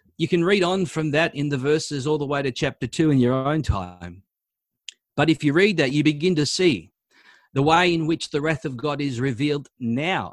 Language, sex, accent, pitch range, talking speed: English, male, Australian, 120-150 Hz, 225 wpm